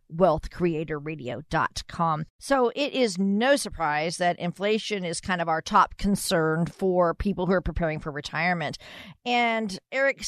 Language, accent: English, American